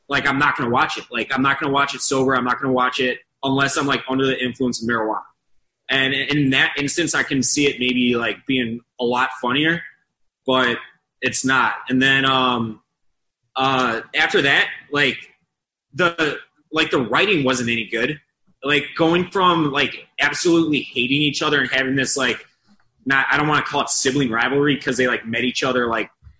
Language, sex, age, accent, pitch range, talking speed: English, male, 20-39, American, 125-145 Hz, 200 wpm